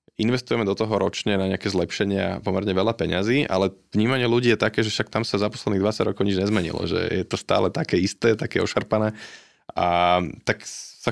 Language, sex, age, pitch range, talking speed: Slovak, male, 20-39, 90-115 Hz, 195 wpm